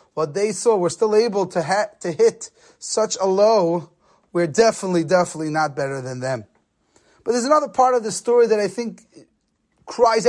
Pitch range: 190-250 Hz